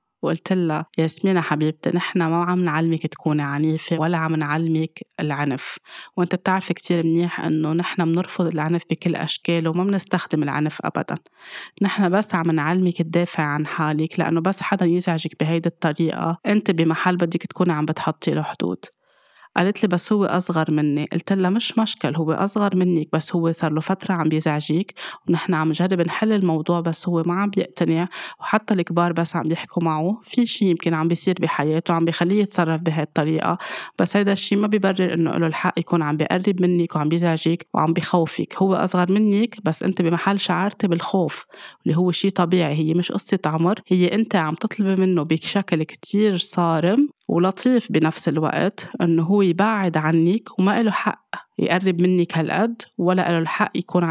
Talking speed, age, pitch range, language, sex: 170 wpm, 20-39, 160-190 Hz, Arabic, female